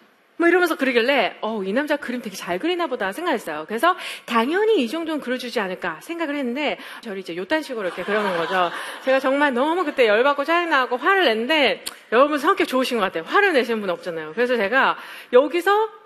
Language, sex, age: Korean, female, 40-59